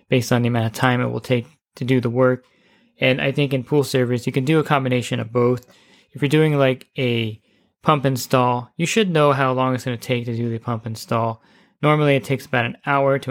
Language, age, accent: English, 20-39, American